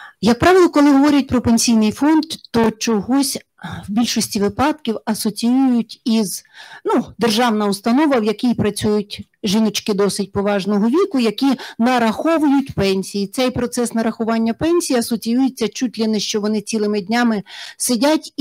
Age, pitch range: 40-59, 215-270 Hz